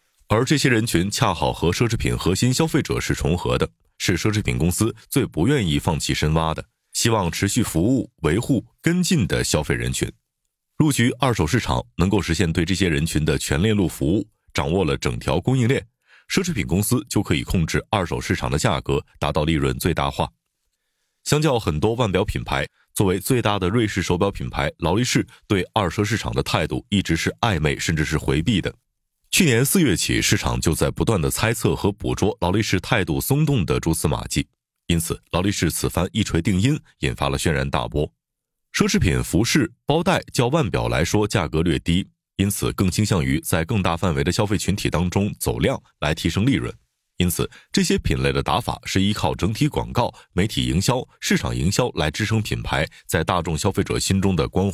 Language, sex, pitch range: Chinese, male, 80-110 Hz